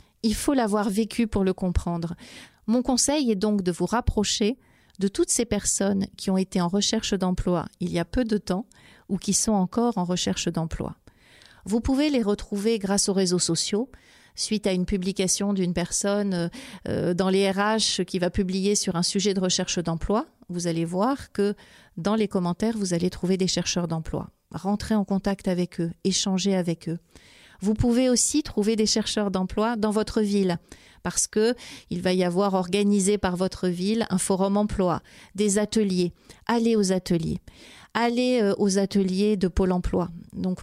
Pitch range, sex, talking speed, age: 185-215 Hz, female, 175 wpm, 40-59